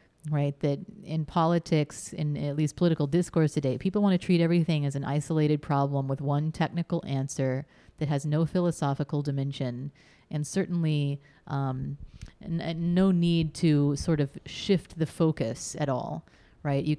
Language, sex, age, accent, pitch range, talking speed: English, female, 30-49, American, 145-165 Hz, 160 wpm